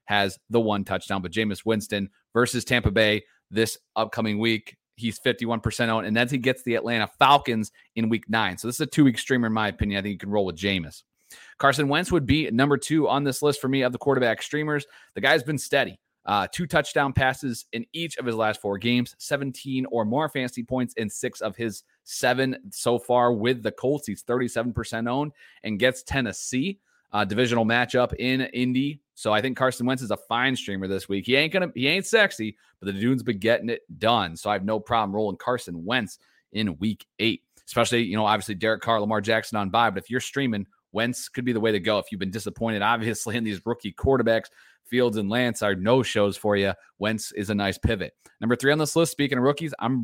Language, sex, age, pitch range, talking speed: English, male, 30-49, 110-130 Hz, 220 wpm